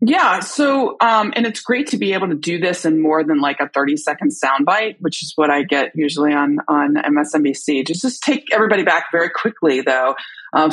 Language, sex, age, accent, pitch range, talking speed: English, female, 30-49, American, 155-235 Hz, 215 wpm